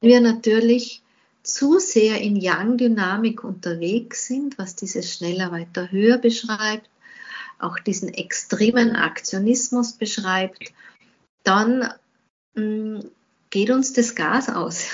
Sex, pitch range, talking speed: female, 200-235 Hz, 110 wpm